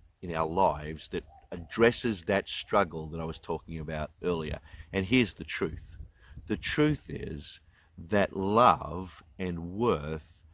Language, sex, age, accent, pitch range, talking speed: English, male, 50-69, Australian, 80-100 Hz, 135 wpm